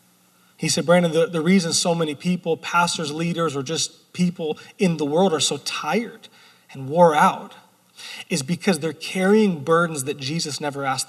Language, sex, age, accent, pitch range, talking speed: English, male, 30-49, American, 135-180 Hz, 175 wpm